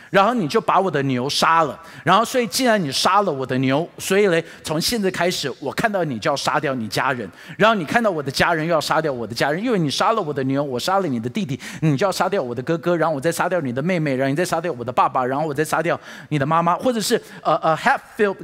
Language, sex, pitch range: Chinese, male, 140-210 Hz